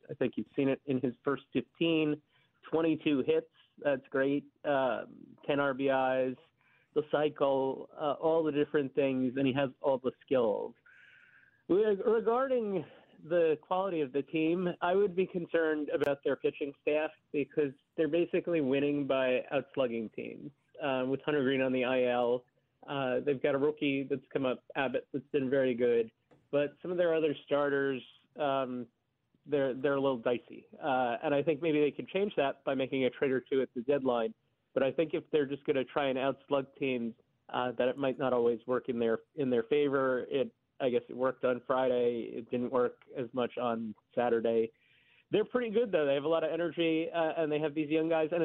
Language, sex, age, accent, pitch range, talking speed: English, male, 30-49, American, 130-160 Hz, 195 wpm